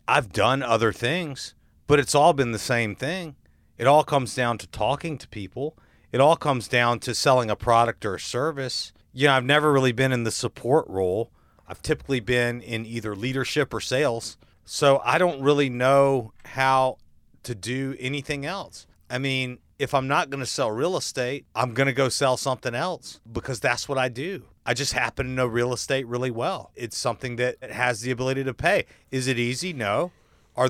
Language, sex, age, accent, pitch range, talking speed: English, male, 40-59, American, 115-135 Hz, 200 wpm